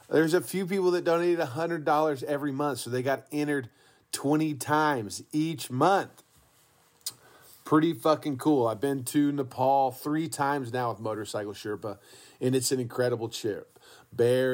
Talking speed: 150 wpm